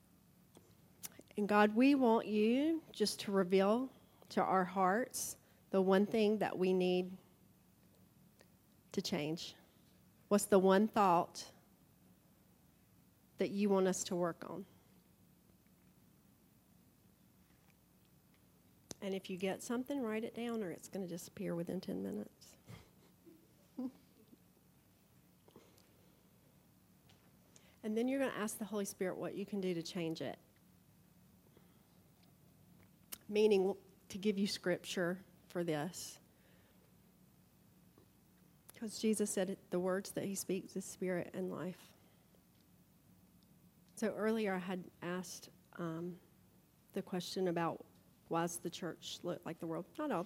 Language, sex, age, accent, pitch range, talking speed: English, female, 40-59, American, 175-205 Hz, 120 wpm